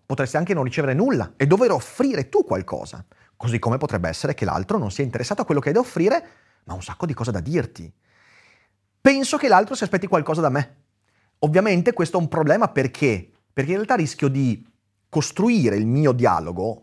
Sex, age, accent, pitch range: male, 30-49, native, 105-160 Hz